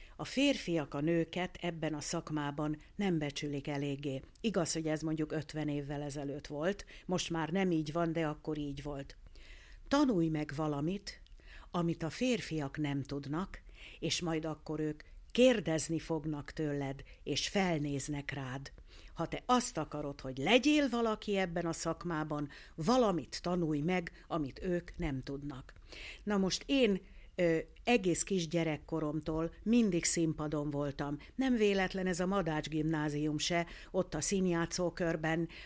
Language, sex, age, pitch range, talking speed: Hungarian, female, 60-79, 155-200 Hz, 135 wpm